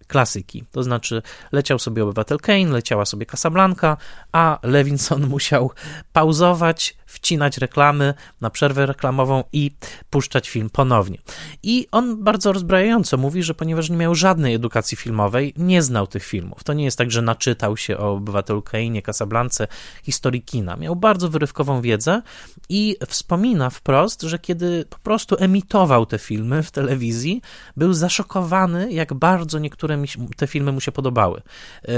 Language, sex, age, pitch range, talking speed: Polish, male, 20-39, 125-170 Hz, 150 wpm